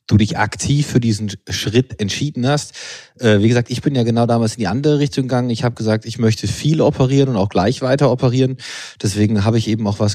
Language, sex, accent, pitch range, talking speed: German, male, German, 110-135 Hz, 230 wpm